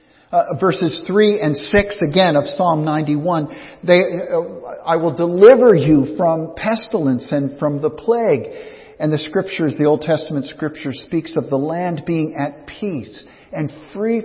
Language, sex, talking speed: English, male, 155 wpm